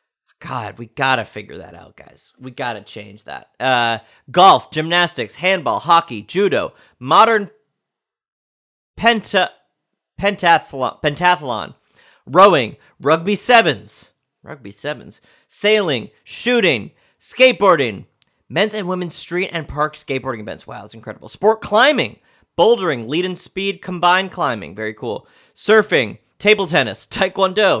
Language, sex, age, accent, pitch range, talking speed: English, male, 40-59, American, 120-195 Hz, 115 wpm